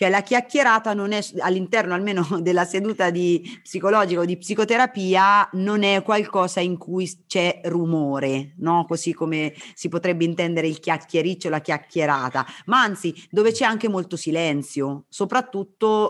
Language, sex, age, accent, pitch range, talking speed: Italian, female, 30-49, native, 170-220 Hz, 140 wpm